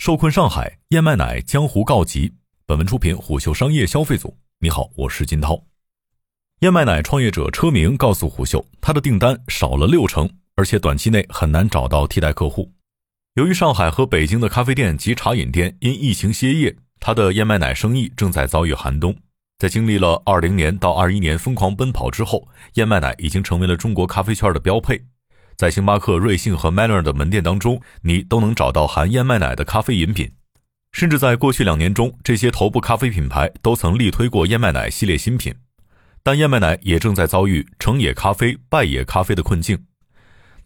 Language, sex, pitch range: Chinese, male, 85-125 Hz